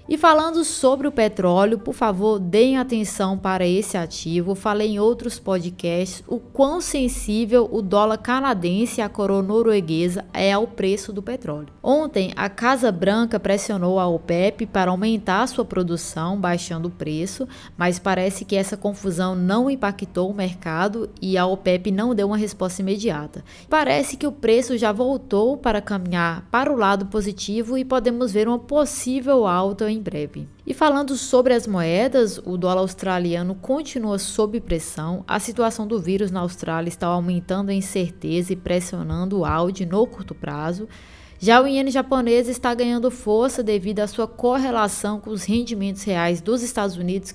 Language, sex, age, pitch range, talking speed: Portuguese, female, 20-39, 185-235 Hz, 160 wpm